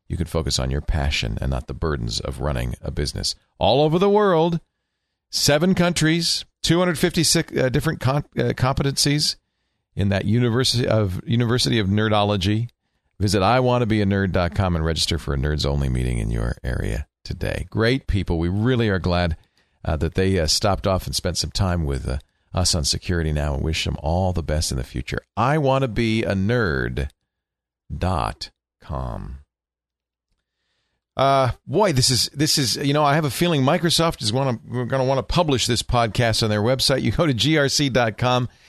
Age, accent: 50-69, American